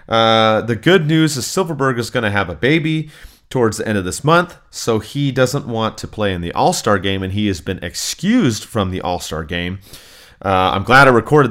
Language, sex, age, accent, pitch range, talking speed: English, male, 30-49, American, 95-130 Hz, 220 wpm